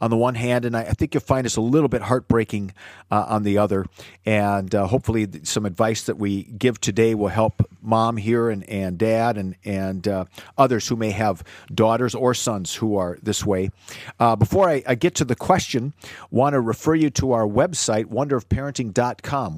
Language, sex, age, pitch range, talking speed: English, male, 50-69, 105-130 Hz, 195 wpm